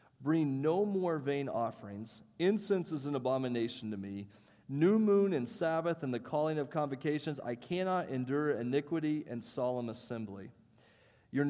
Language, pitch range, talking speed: English, 115-145 Hz, 145 wpm